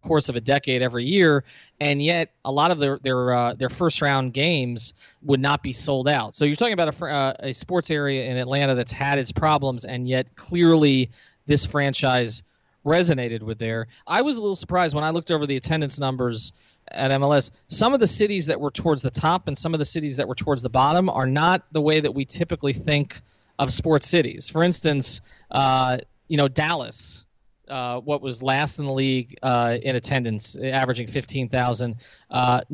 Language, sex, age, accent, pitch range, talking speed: English, male, 30-49, American, 125-155 Hz, 200 wpm